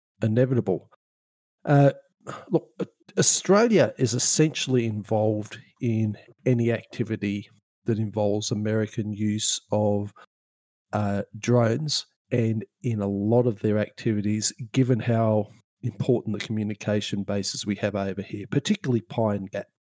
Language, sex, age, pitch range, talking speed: English, male, 40-59, 100-120 Hz, 110 wpm